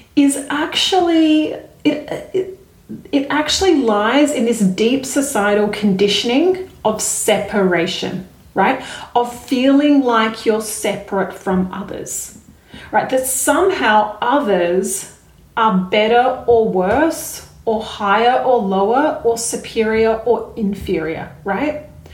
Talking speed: 105 wpm